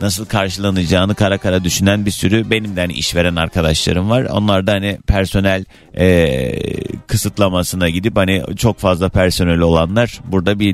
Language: Turkish